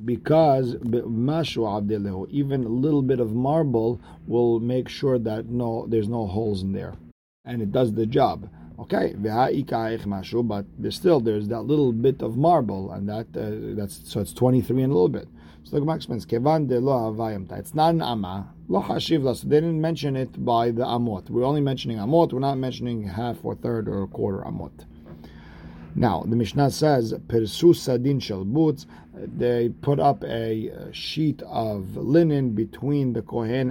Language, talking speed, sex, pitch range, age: English, 165 wpm, male, 110-135 Hz, 50-69